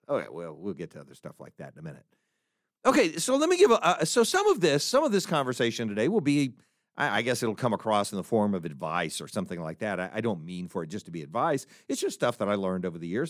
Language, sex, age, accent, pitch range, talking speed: English, male, 50-69, American, 100-145 Hz, 290 wpm